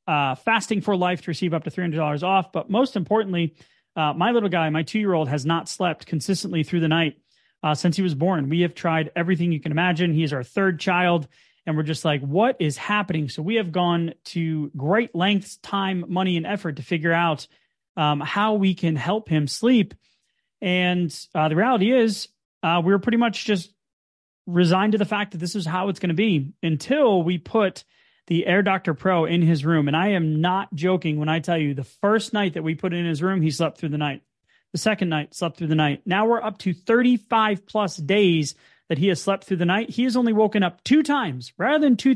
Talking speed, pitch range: 225 wpm, 160-205 Hz